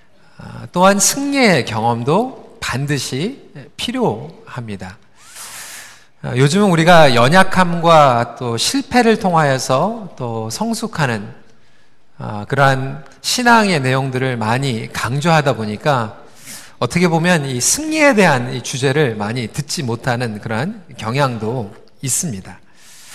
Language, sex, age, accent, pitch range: Korean, male, 40-59, native, 120-200 Hz